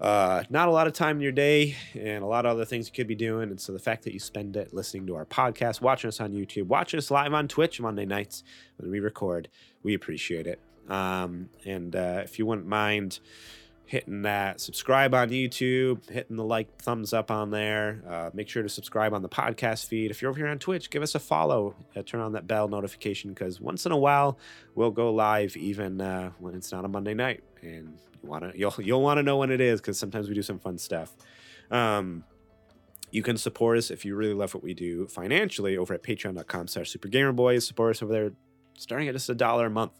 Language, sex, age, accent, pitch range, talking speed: English, male, 30-49, American, 95-120 Hz, 230 wpm